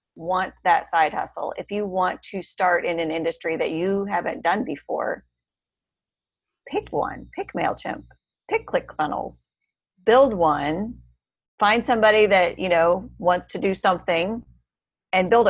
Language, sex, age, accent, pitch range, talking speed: English, female, 30-49, American, 170-225 Hz, 145 wpm